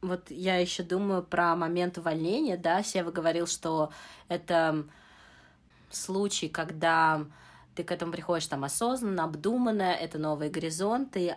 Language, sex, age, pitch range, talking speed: Russian, female, 20-39, 160-185 Hz, 125 wpm